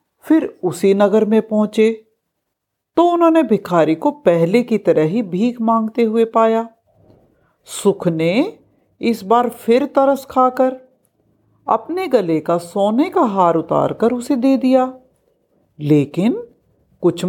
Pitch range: 190-275 Hz